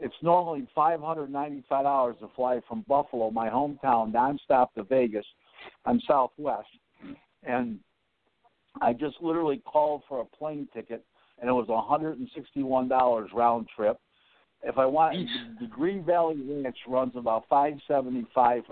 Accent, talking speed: American, 125 wpm